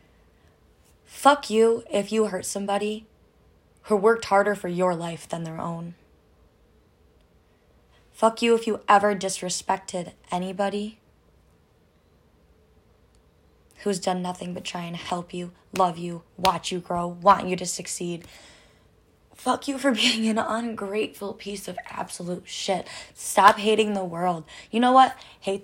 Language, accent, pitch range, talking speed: English, American, 175-225 Hz, 135 wpm